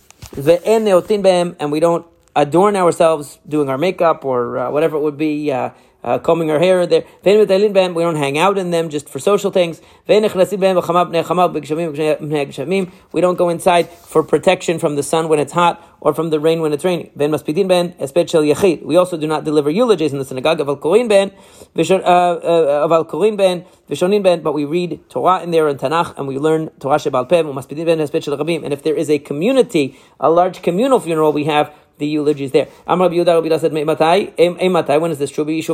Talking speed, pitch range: 165 wpm, 150-190 Hz